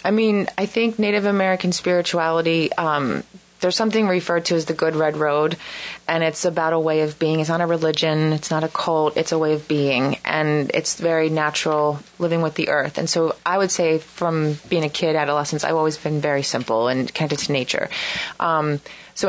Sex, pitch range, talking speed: female, 150-165 Hz, 205 wpm